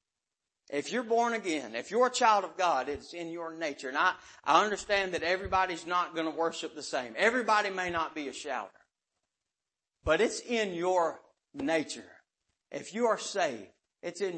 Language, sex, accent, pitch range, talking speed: English, male, American, 140-180 Hz, 180 wpm